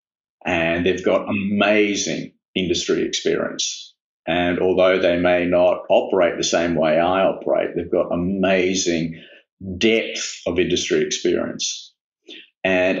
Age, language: 50-69, English